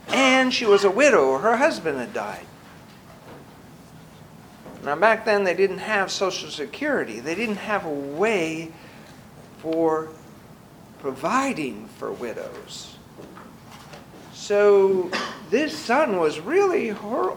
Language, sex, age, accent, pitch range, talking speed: English, male, 50-69, American, 160-260 Hz, 110 wpm